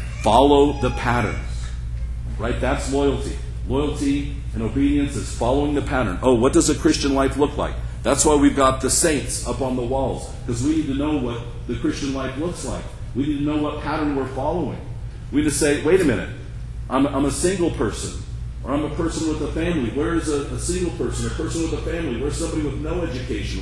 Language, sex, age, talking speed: English, male, 40-59, 215 wpm